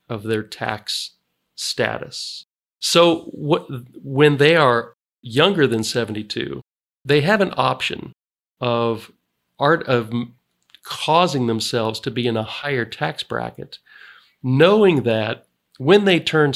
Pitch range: 115-140 Hz